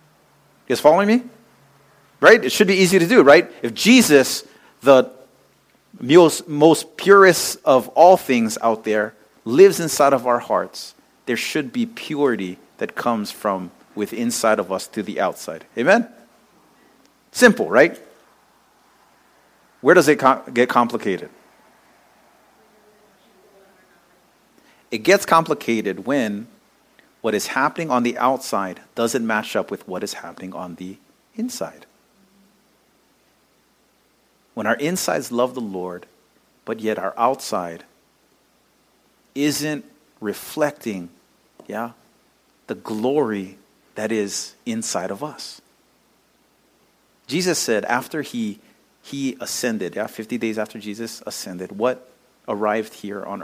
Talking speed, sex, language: 120 wpm, male, English